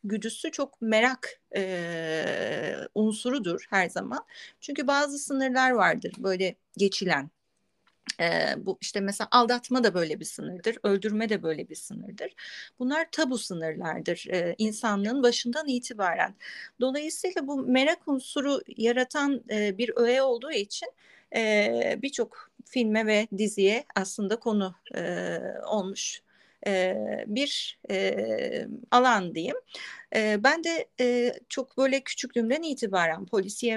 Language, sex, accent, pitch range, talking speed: Turkish, female, native, 210-265 Hz, 110 wpm